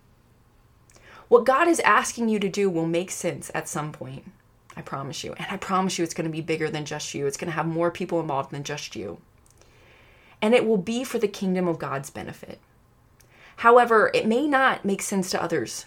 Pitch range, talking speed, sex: 155-215 Hz, 210 wpm, female